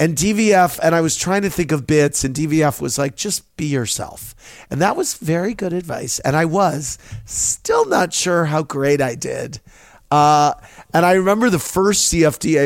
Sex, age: male, 40-59